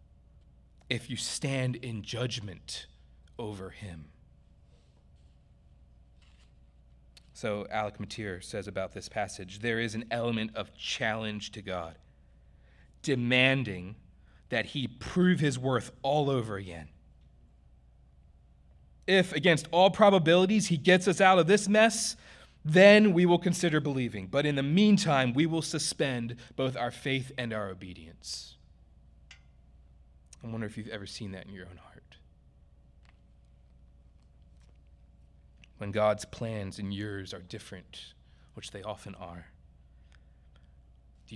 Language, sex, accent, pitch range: English, male, American, 70-115 Hz